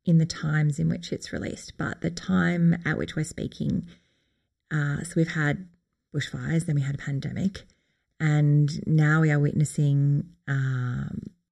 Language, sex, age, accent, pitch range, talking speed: English, female, 30-49, Australian, 140-170 Hz, 155 wpm